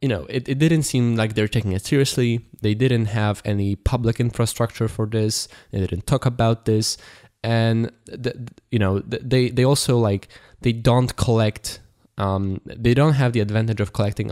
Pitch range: 100-120 Hz